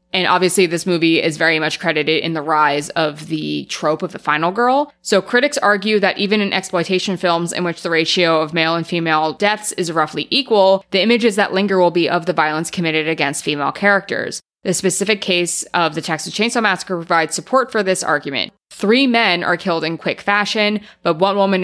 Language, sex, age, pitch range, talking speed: English, female, 20-39, 165-200 Hz, 205 wpm